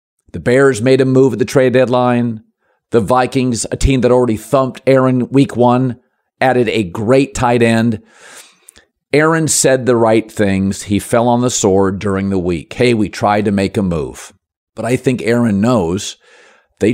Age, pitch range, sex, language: 50-69, 110-135 Hz, male, English